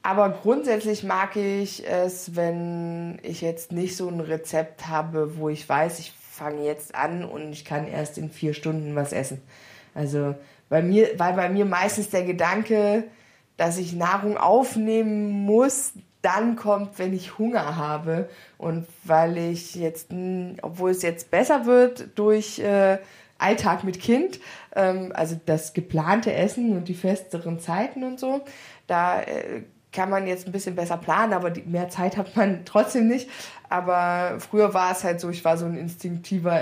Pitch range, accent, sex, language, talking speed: 155-200 Hz, German, female, German, 160 wpm